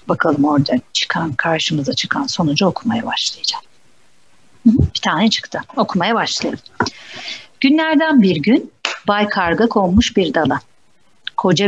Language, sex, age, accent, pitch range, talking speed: Turkish, female, 50-69, native, 175-250 Hz, 115 wpm